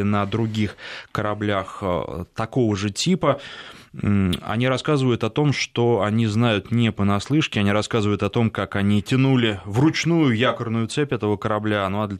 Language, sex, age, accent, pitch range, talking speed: Russian, male, 20-39, native, 100-125 Hz, 150 wpm